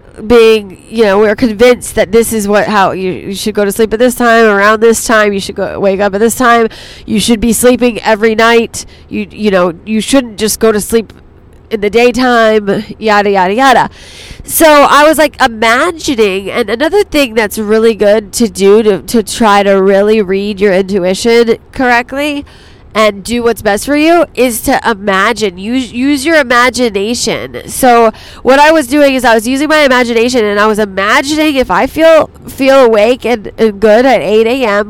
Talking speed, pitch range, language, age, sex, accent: 195 wpm, 205-250 Hz, English, 20-39, female, American